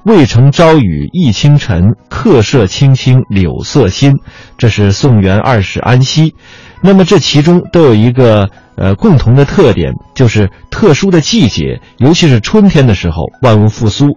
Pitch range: 100-145 Hz